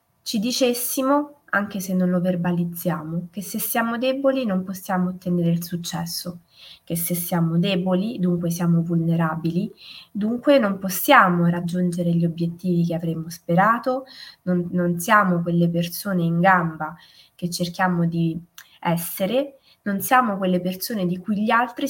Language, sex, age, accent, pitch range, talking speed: Italian, female, 20-39, native, 170-215 Hz, 140 wpm